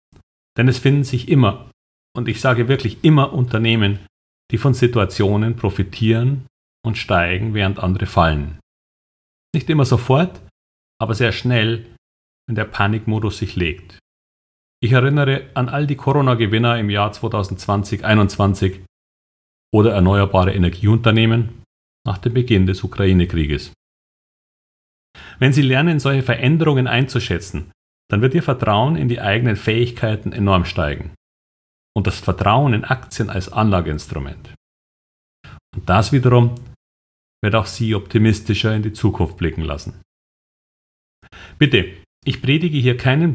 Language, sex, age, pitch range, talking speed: German, male, 40-59, 95-125 Hz, 125 wpm